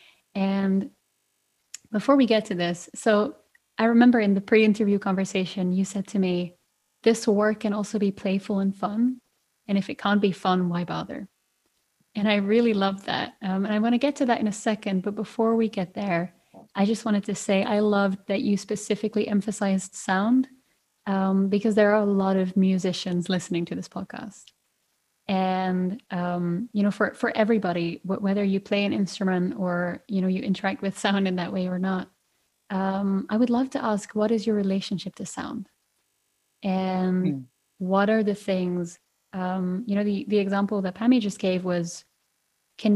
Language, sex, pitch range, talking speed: English, female, 185-215 Hz, 185 wpm